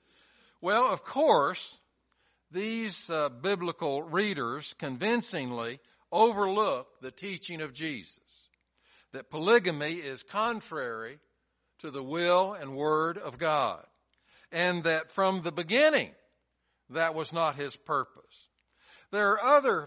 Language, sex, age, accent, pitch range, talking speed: English, male, 60-79, American, 145-200 Hz, 110 wpm